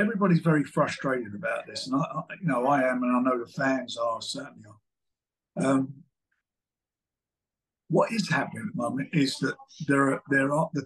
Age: 50-69